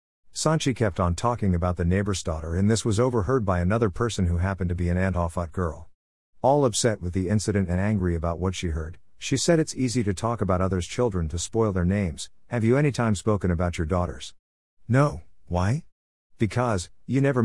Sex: male